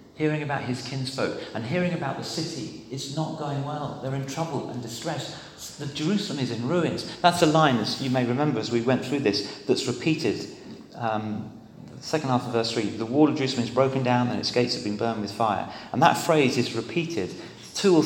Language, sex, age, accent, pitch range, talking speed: English, male, 40-59, British, 110-145 Hz, 220 wpm